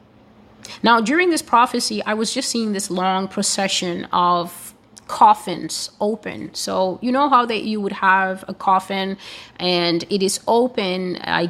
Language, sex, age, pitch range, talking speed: English, female, 30-49, 185-235 Hz, 150 wpm